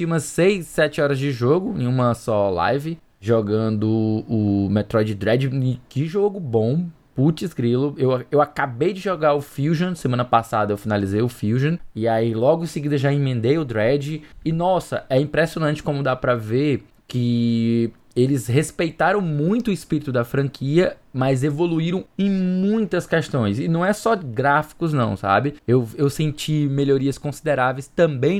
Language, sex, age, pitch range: Portuguese, male, 20-39, 120-155 Hz